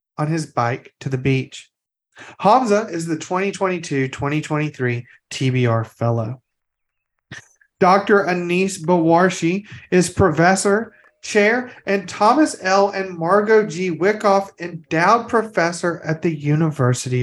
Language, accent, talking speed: English, American, 110 wpm